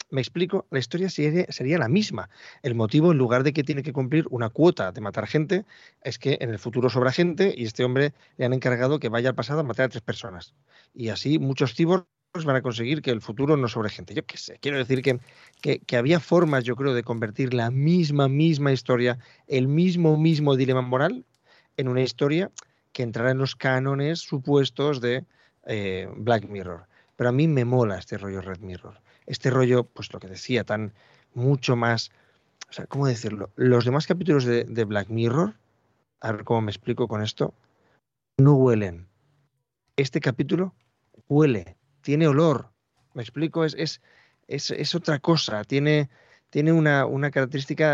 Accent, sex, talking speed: Spanish, male, 185 wpm